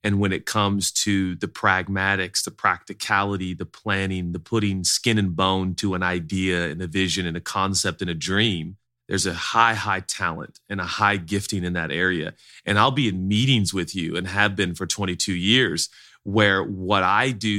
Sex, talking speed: male, 195 wpm